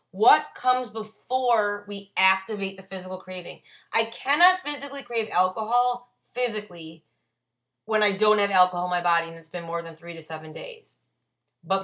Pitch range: 175-220 Hz